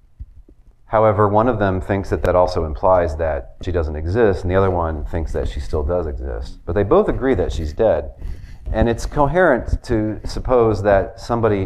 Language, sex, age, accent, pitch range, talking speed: English, male, 40-59, American, 80-105 Hz, 190 wpm